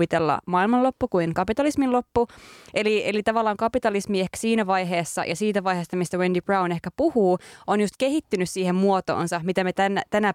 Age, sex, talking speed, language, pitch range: 20-39, female, 155 wpm, Finnish, 170-205 Hz